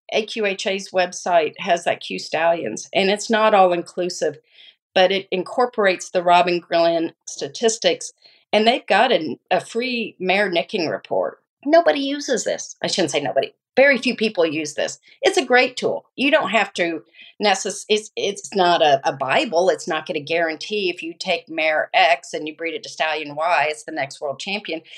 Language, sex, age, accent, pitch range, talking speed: English, female, 40-59, American, 170-220 Hz, 175 wpm